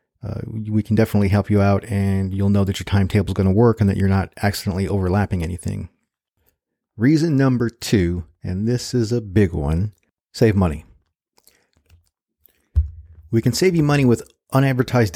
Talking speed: 165 wpm